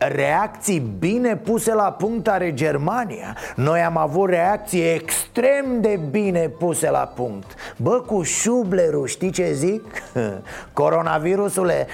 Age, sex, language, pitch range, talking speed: 30-49, male, Romanian, 140-205 Hz, 120 wpm